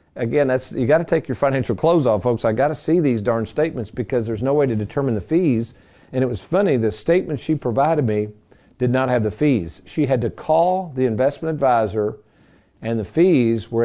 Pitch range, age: 115-155 Hz, 50-69